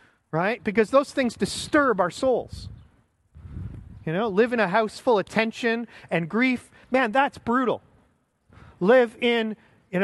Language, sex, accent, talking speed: English, male, American, 145 wpm